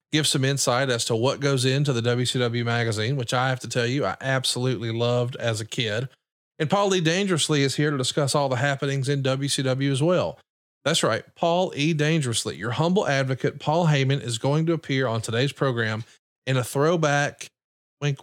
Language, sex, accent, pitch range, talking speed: English, male, American, 120-150 Hz, 195 wpm